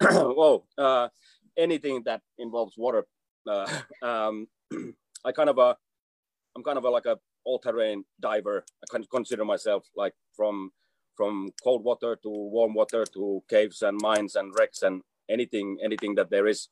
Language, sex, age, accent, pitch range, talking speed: English, male, 30-49, Finnish, 100-130 Hz, 170 wpm